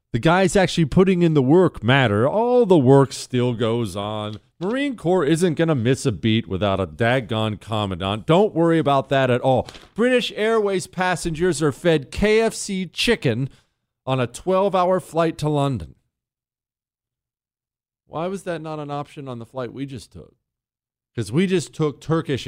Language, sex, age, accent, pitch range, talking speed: English, male, 40-59, American, 115-180 Hz, 165 wpm